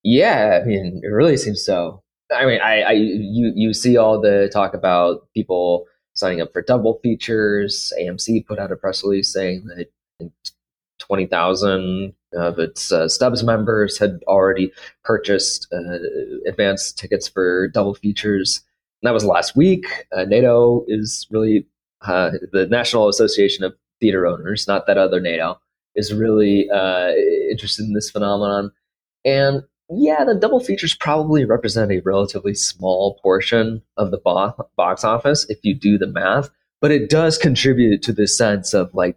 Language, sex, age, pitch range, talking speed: English, male, 30-49, 95-120 Hz, 160 wpm